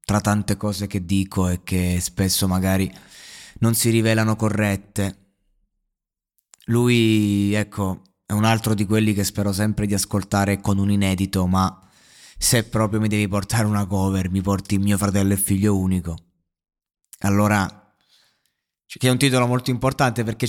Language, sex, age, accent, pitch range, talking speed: Italian, male, 20-39, native, 100-110 Hz, 150 wpm